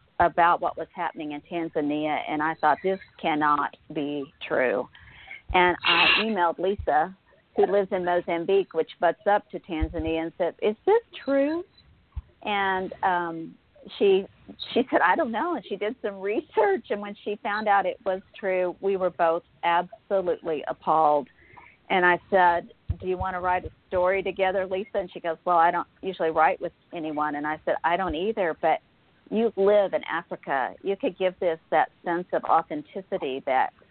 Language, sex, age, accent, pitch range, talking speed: English, female, 50-69, American, 165-205 Hz, 175 wpm